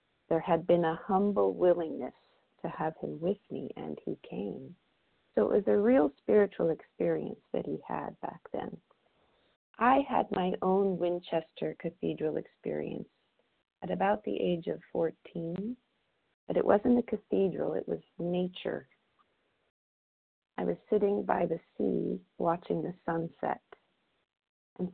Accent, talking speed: American, 135 wpm